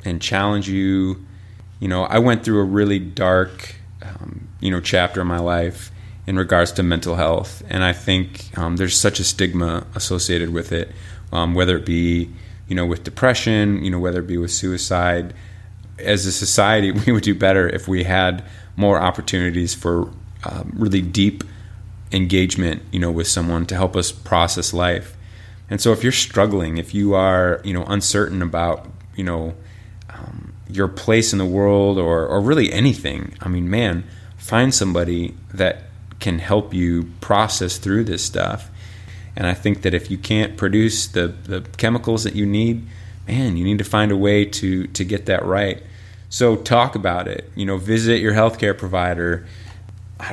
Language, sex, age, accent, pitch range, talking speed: English, male, 30-49, American, 90-100 Hz, 180 wpm